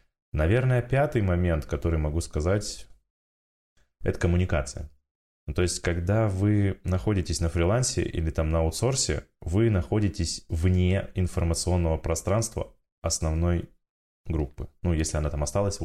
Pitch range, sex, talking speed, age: 80-105 Hz, male, 115 wpm, 20-39